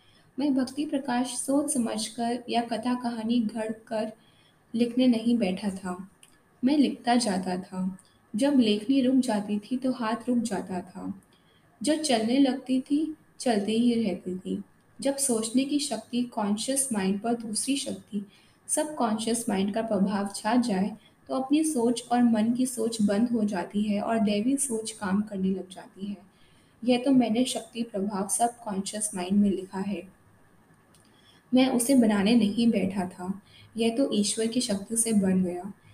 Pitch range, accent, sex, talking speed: 200-245 Hz, native, female, 160 wpm